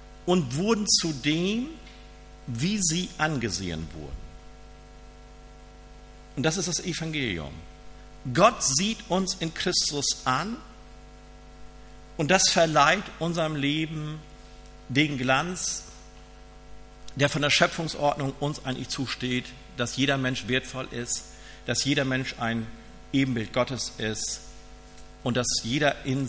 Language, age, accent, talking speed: German, 50-69, German, 110 wpm